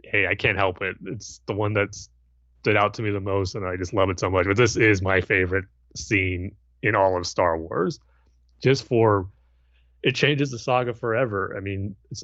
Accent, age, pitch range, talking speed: American, 30-49, 95-115 Hz, 210 wpm